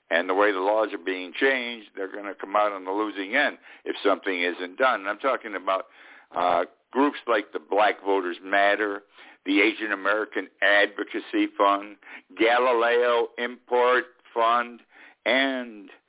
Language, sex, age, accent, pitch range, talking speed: English, male, 60-79, American, 100-135 Hz, 155 wpm